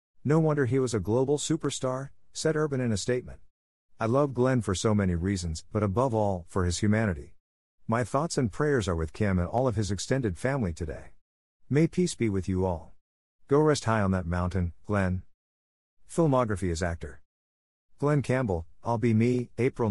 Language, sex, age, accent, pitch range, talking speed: English, male, 50-69, American, 90-120 Hz, 185 wpm